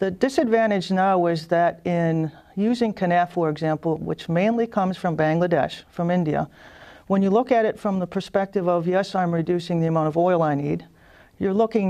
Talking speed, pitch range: 185 wpm, 165-205 Hz